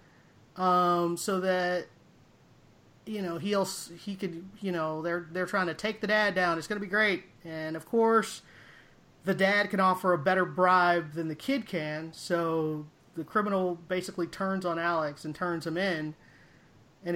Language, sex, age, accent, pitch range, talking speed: English, male, 30-49, American, 165-200 Hz, 170 wpm